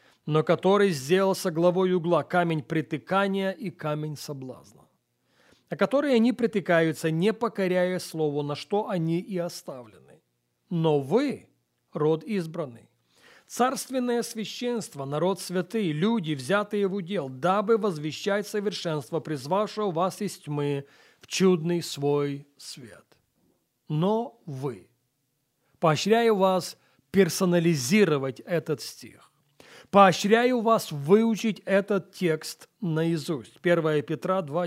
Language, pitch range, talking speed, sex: Russian, 155-210 Hz, 105 wpm, male